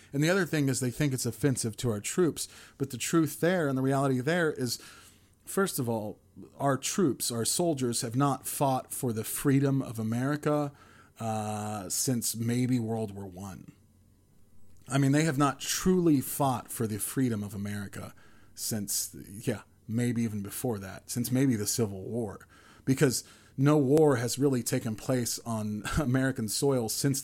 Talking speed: 170 wpm